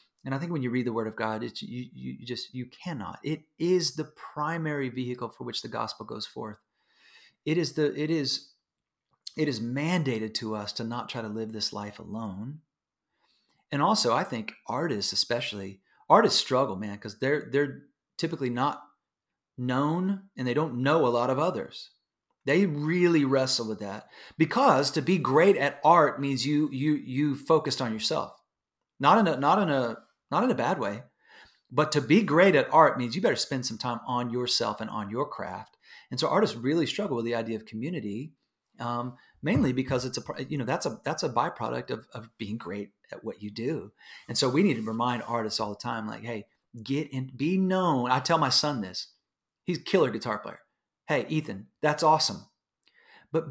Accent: American